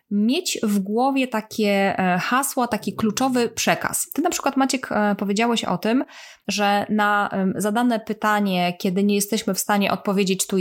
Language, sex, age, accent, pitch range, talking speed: Polish, female, 20-39, native, 190-230 Hz, 145 wpm